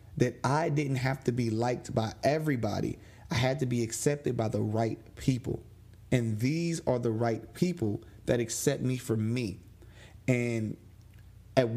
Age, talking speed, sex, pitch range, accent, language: 30-49, 160 wpm, male, 110-140 Hz, American, English